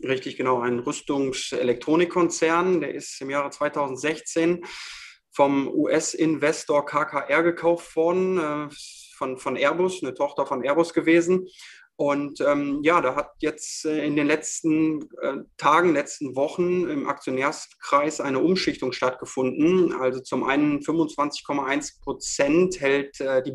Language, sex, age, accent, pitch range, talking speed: German, male, 20-39, German, 140-165 Hz, 125 wpm